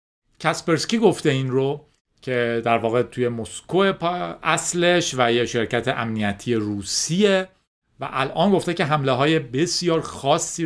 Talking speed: 130 wpm